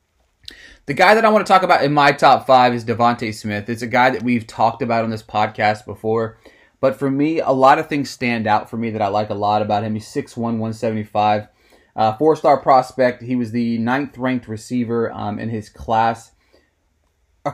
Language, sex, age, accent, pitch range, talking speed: English, male, 30-49, American, 105-130 Hz, 205 wpm